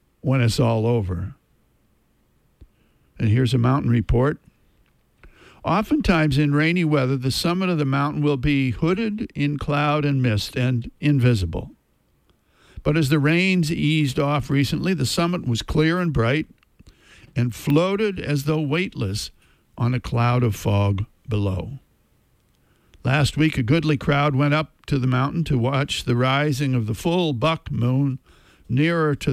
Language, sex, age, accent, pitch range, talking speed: English, male, 60-79, American, 115-150 Hz, 145 wpm